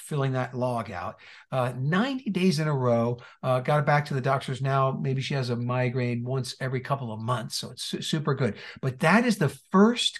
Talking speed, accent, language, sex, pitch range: 220 wpm, American, English, male, 130-165 Hz